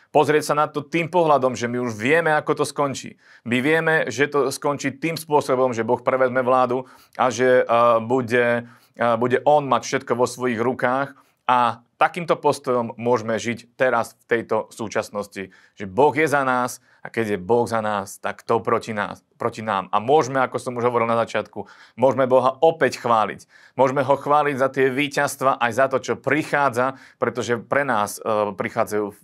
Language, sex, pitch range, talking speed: Slovak, male, 110-135 Hz, 185 wpm